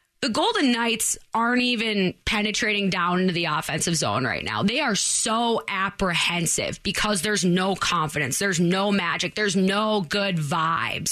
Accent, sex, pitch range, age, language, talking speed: American, female, 190-240 Hz, 20-39, English, 150 wpm